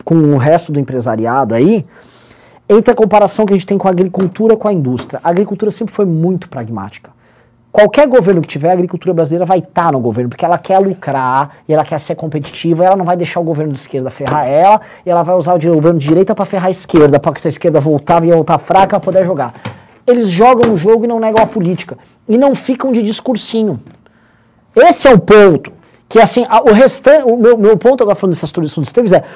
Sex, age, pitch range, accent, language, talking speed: male, 20-39, 165-245 Hz, Brazilian, Portuguese, 235 wpm